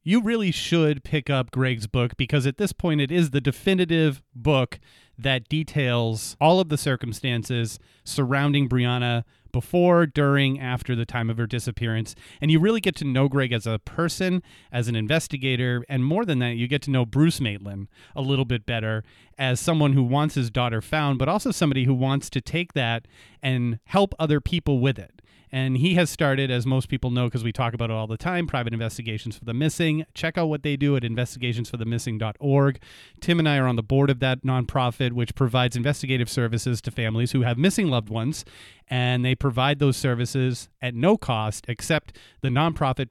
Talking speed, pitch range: 195 wpm, 120-150 Hz